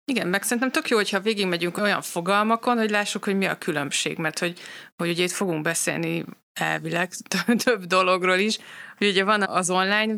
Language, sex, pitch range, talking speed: Hungarian, female, 165-200 Hz, 185 wpm